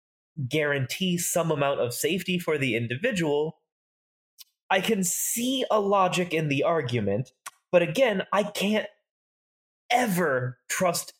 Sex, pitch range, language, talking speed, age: male, 125-185 Hz, English, 120 wpm, 20-39